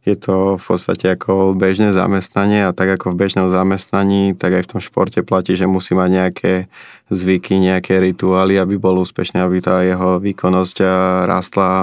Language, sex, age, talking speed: Slovak, male, 20-39, 170 wpm